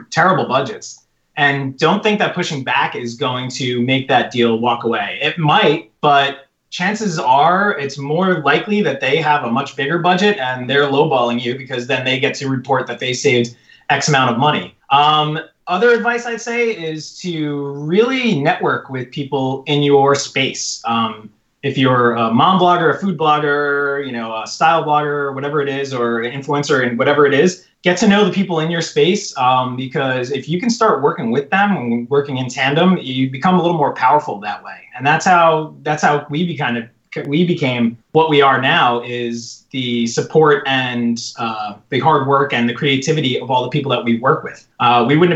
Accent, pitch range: American, 125-160 Hz